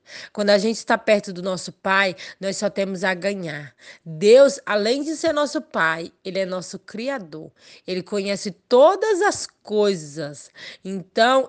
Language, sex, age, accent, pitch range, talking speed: Portuguese, female, 20-39, Brazilian, 165-220 Hz, 150 wpm